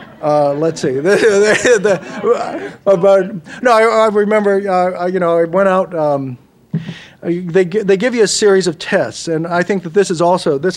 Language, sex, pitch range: English, male, 150-200 Hz